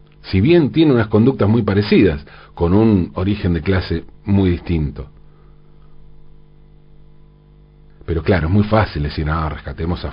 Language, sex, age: Spanish, male, 40-59